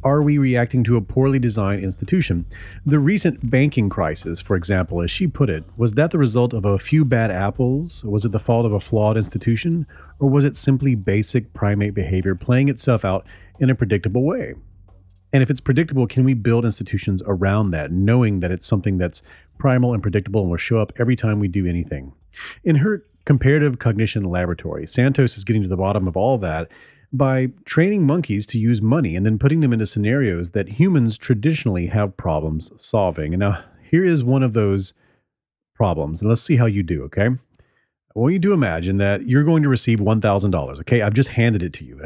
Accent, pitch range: American, 95-130 Hz